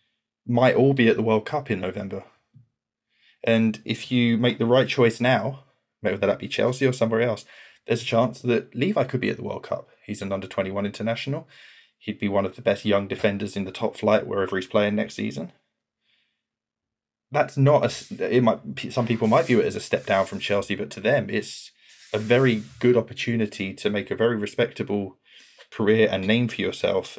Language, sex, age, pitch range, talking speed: English, male, 20-39, 105-125 Hz, 190 wpm